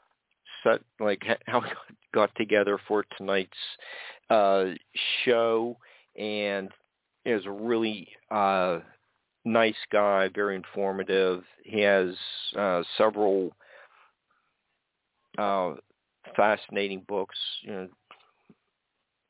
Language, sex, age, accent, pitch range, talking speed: English, male, 50-69, American, 95-105 Hz, 85 wpm